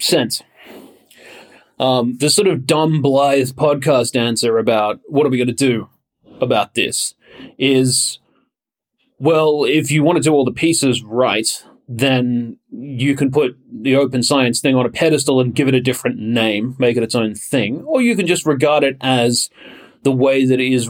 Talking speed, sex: 180 wpm, male